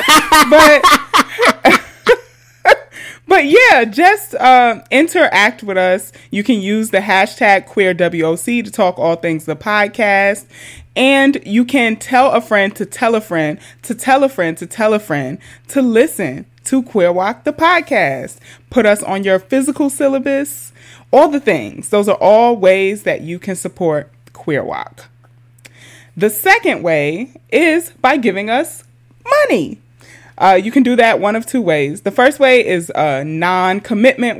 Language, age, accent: English, 30-49, American